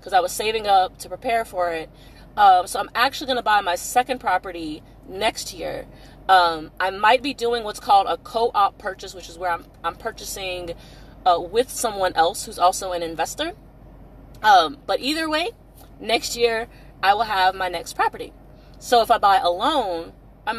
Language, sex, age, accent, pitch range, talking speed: English, female, 30-49, American, 175-260 Hz, 180 wpm